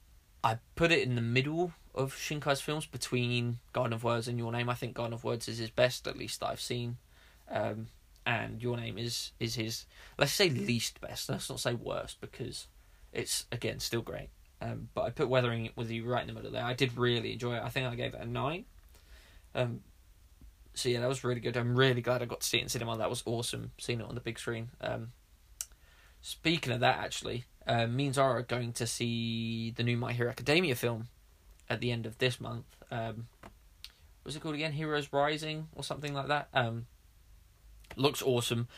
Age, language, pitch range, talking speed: 20-39, English, 115-125 Hz, 210 wpm